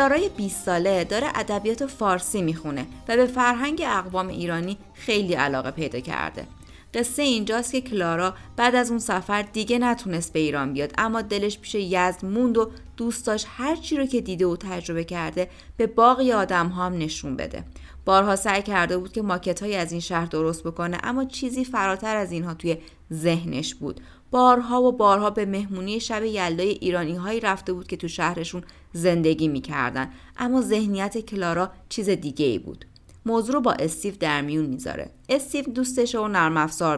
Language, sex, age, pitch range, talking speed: Persian, female, 30-49, 170-230 Hz, 165 wpm